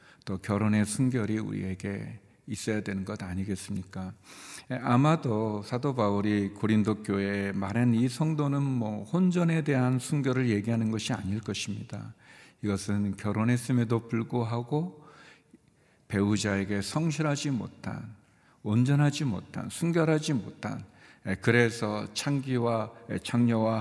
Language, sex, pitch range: Korean, male, 105-145 Hz